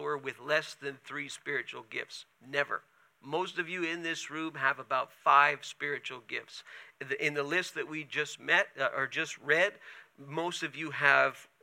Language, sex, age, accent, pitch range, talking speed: English, male, 50-69, American, 145-180 Hz, 175 wpm